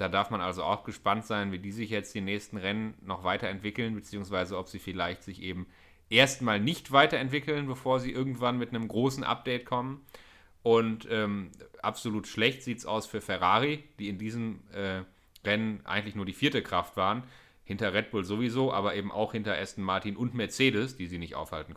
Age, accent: 30-49, German